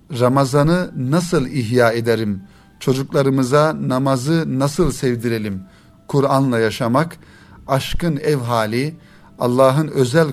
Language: Turkish